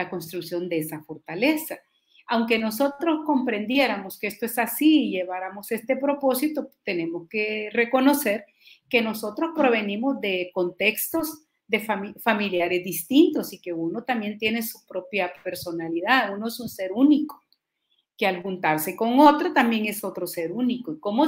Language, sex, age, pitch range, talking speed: Spanish, female, 40-59, 195-270 Hz, 145 wpm